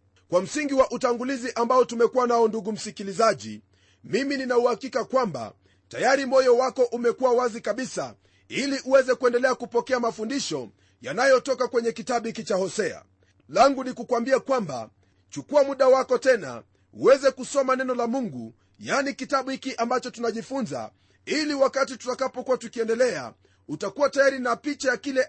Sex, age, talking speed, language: male, 40-59, 135 wpm, Swahili